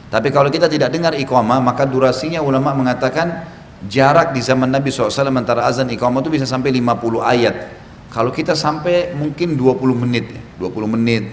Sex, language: male, Indonesian